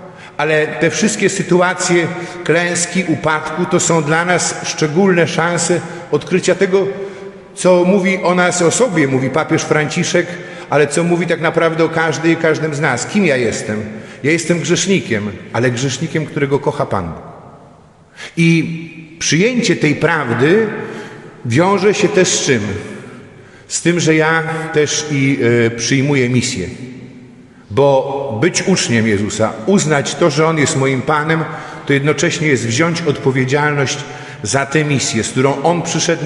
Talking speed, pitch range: 140 wpm, 140-175 Hz